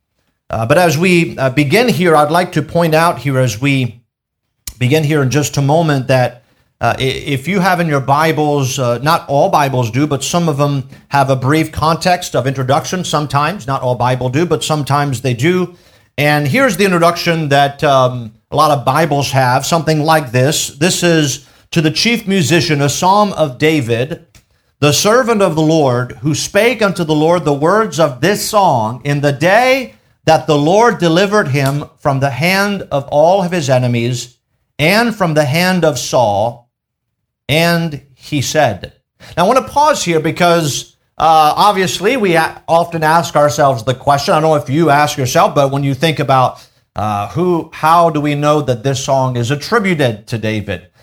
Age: 50-69